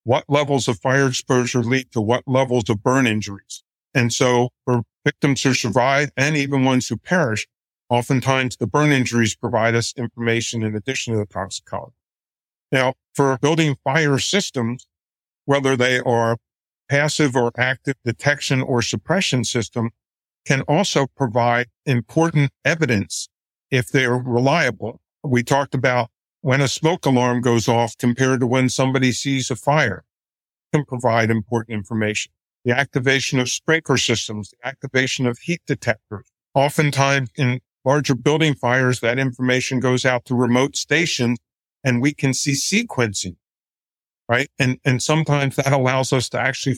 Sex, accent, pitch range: male, American, 120-140 Hz